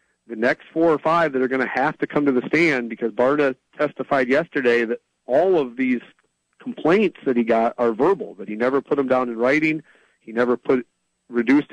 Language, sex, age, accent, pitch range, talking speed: English, male, 40-59, American, 115-140 Hz, 210 wpm